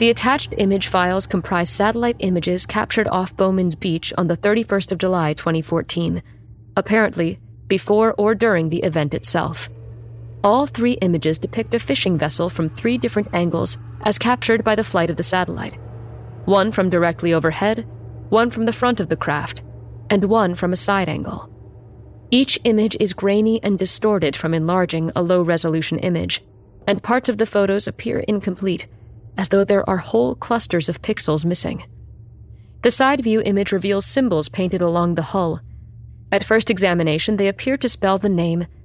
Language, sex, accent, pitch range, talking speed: English, female, American, 160-210 Hz, 165 wpm